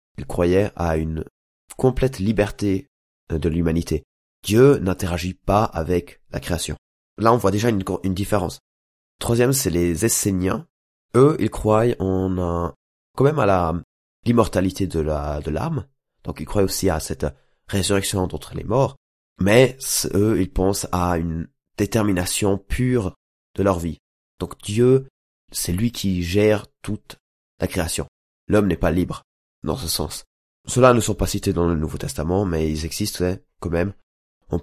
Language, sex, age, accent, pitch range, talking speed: French, male, 20-39, French, 80-100 Hz, 155 wpm